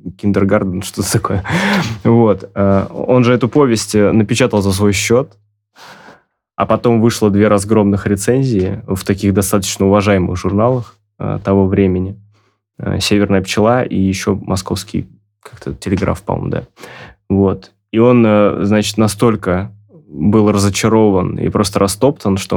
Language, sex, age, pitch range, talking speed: Russian, male, 20-39, 100-115 Hz, 120 wpm